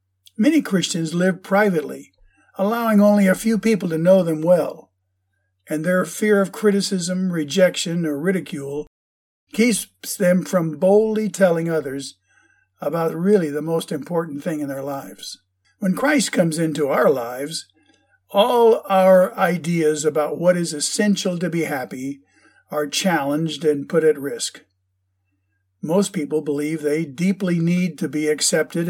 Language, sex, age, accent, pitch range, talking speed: English, male, 50-69, American, 140-190 Hz, 140 wpm